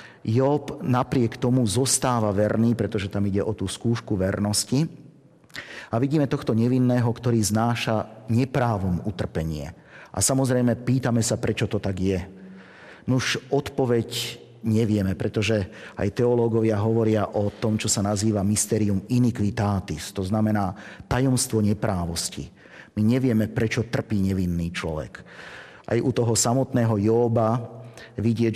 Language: Slovak